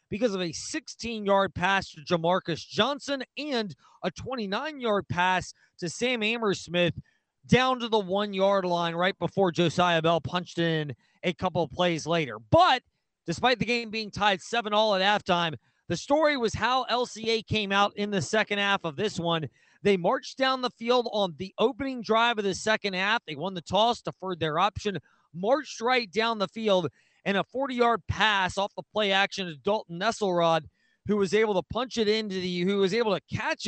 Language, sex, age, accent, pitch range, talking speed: English, male, 30-49, American, 180-230 Hz, 185 wpm